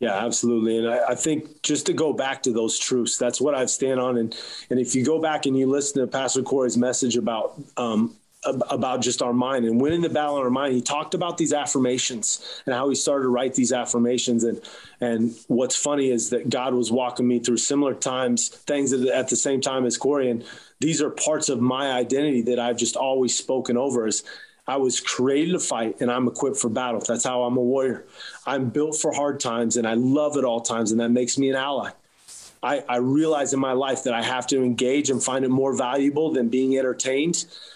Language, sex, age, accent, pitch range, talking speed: English, male, 30-49, American, 125-145 Hz, 230 wpm